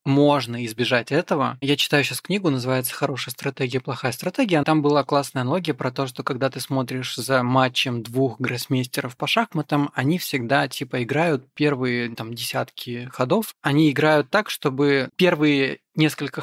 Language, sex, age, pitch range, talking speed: Russian, male, 20-39, 130-150 Hz, 155 wpm